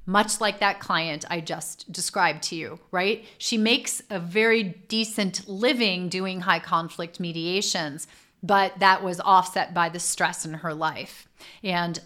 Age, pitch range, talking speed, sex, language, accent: 30-49, 170-210 Hz, 155 wpm, female, English, American